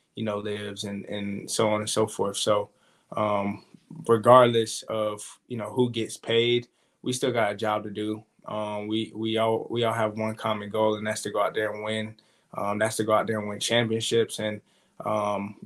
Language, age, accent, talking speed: English, 20-39, American, 210 wpm